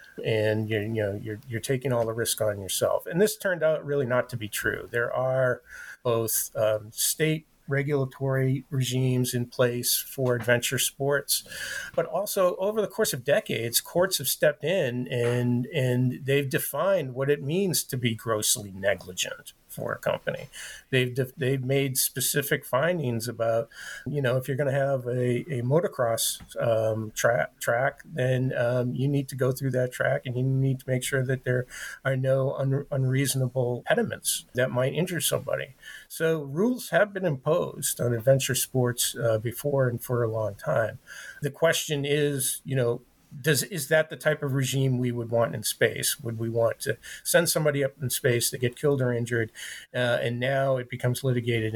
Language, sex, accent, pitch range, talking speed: English, male, American, 120-140 Hz, 180 wpm